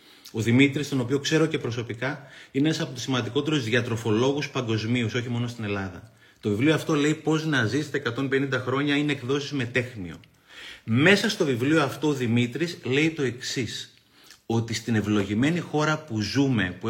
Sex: male